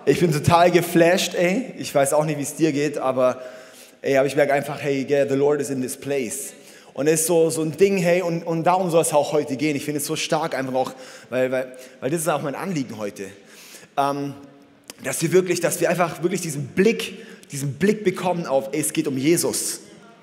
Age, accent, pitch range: 20-39, German, 150-205 Hz